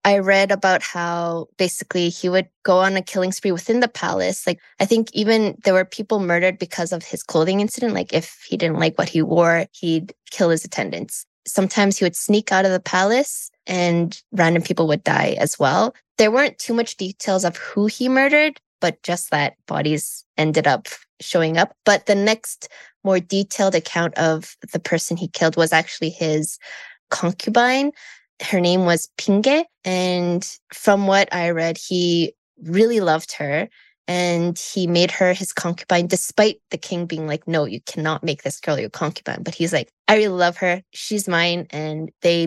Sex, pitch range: female, 165-200 Hz